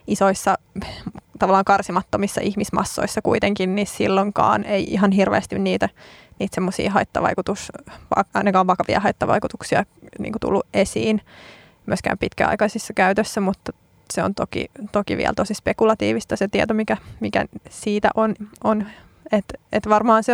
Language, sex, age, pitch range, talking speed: Finnish, female, 20-39, 190-215 Hz, 125 wpm